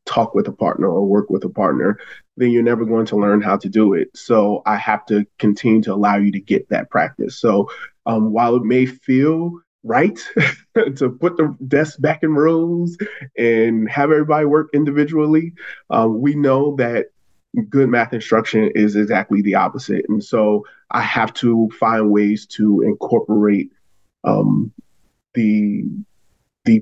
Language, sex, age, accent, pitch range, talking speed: English, male, 20-39, American, 105-130 Hz, 165 wpm